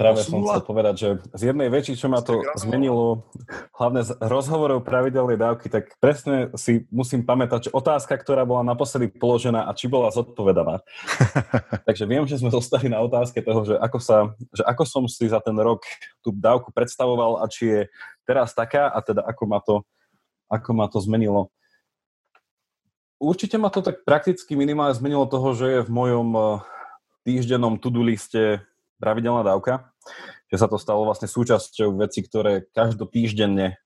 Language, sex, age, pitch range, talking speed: Slovak, male, 20-39, 105-125 Hz, 165 wpm